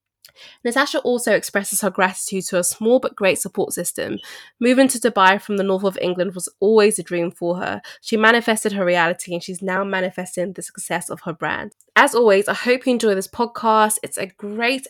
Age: 10-29